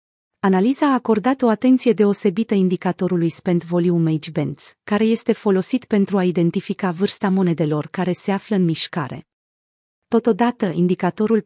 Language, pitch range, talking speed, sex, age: Romanian, 175-225 Hz, 135 wpm, female, 30-49